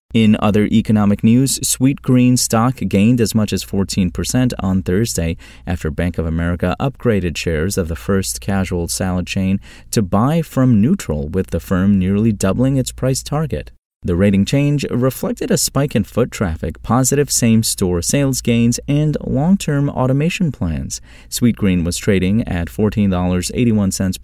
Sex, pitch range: male, 90-120 Hz